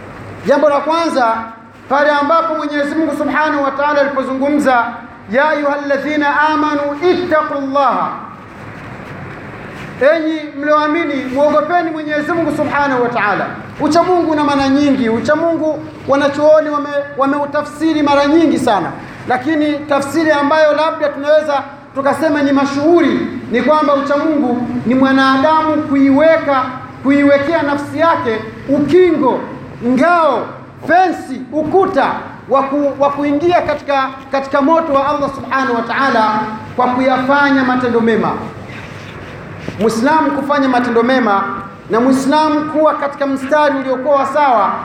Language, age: Swahili, 40-59